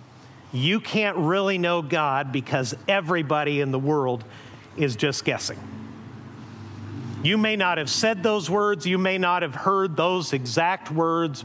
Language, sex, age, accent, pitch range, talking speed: English, male, 50-69, American, 135-185 Hz, 145 wpm